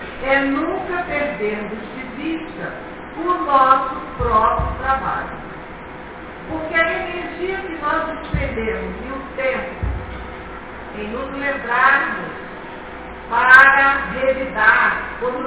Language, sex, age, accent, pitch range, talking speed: Portuguese, female, 50-69, Brazilian, 235-310 Hz, 95 wpm